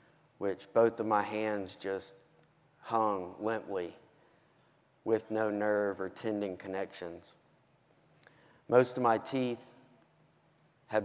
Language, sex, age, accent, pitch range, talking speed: English, male, 40-59, American, 105-125 Hz, 105 wpm